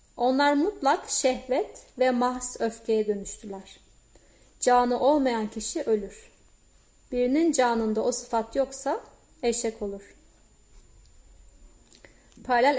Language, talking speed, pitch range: Turkish, 90 wpm, 220-255 Hz